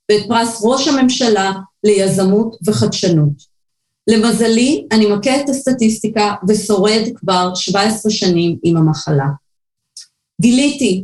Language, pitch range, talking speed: Hebrew, 195-255 Hz, 90 wpm